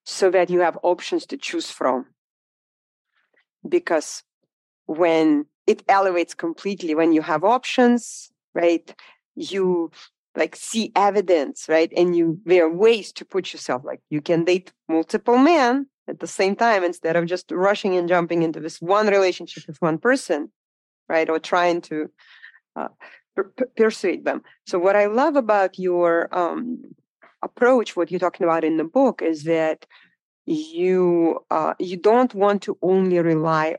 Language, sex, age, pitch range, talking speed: English, female, 30-49, 160-205 Hz, 155 wpm